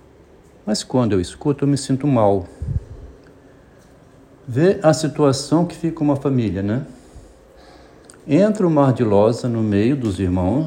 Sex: male